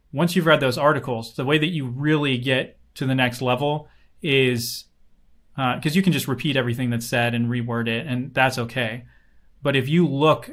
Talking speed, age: 200 wpm, 30-49